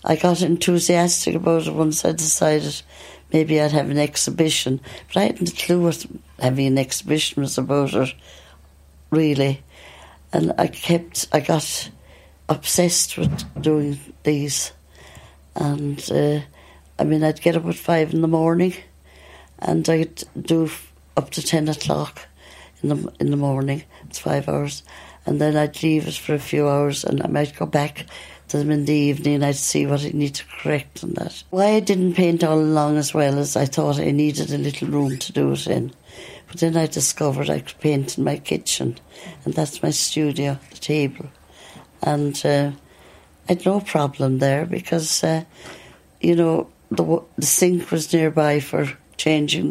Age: 60-79